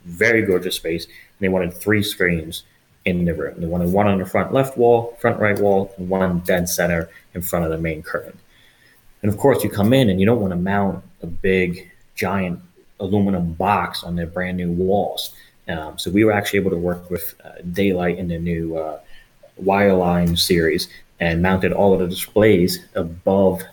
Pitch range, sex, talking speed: 85-95 Hz, male, 195 wpm